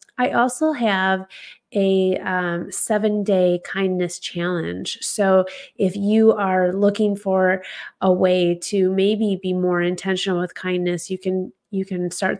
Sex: female